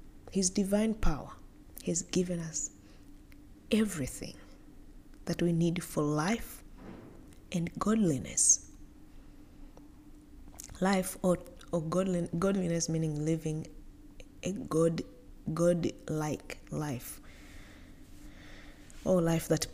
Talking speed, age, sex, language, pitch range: 85 wpm, 20-39, female, English, 140-180 Hz